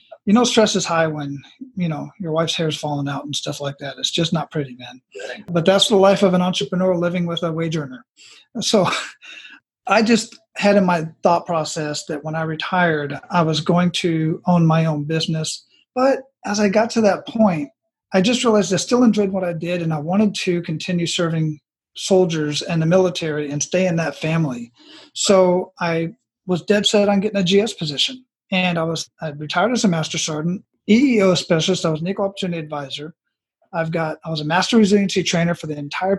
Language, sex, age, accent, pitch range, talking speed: English, male, 40-59, American, 160-200 Hz, 205 wpm